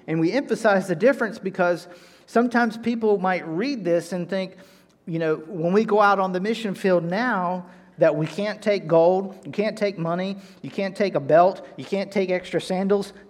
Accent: American